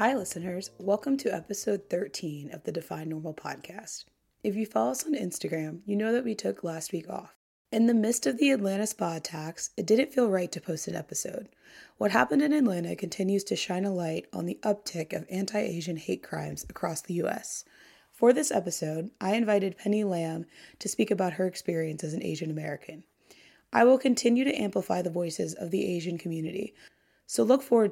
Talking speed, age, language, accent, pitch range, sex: 195 wpm, 20-39, English, American, 175-220 Hz, female